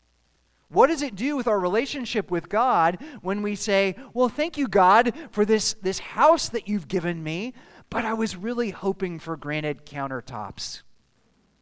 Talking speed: 165 wpm